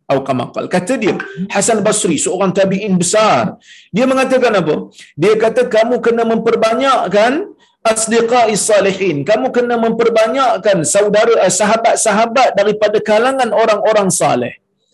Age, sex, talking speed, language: 50-69, male, 105 wpm, Malayalam